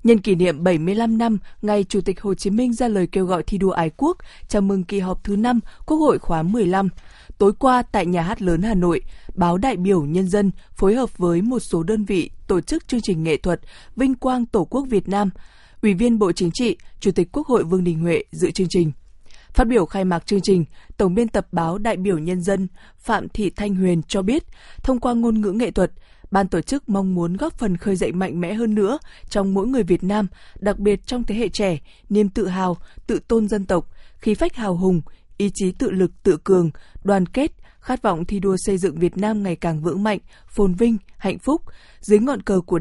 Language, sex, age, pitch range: Vietnamese, female, 20-39, 180-220 Hz